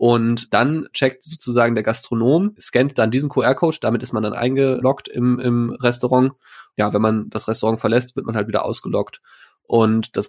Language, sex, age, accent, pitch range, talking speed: German, male, 20-39, German, 110-125 Hz, 180 wpm